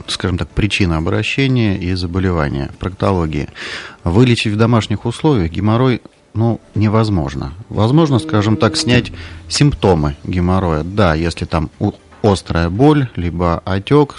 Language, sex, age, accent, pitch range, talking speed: Russian, male, 30-49, native, 85-110 Hz, 115 wpm